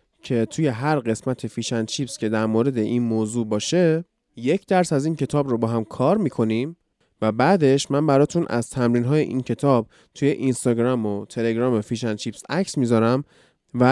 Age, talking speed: 20-39, 175 wpm